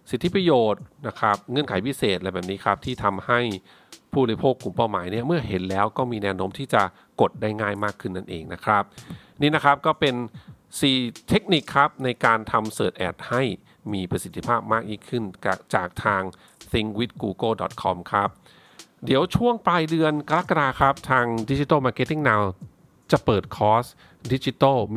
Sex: male